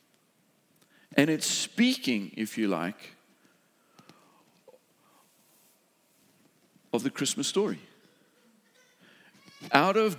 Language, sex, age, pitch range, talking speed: English, male, 50-69, 140-200 Hz, 70 wpm